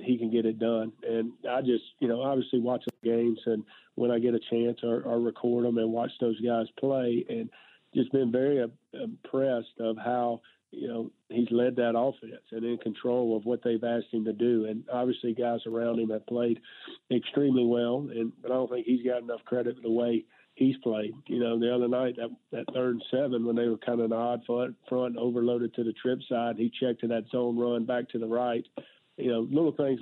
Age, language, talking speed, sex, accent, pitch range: 40-59, English, 220 wpm, male, American, 115-125 Hz